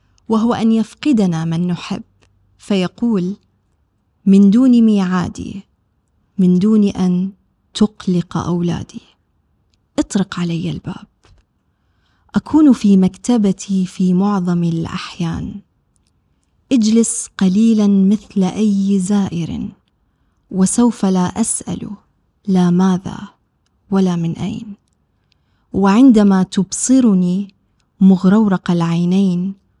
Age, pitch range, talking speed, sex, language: 20-39, 180-215 Hz, 80 wpm, female, Arabic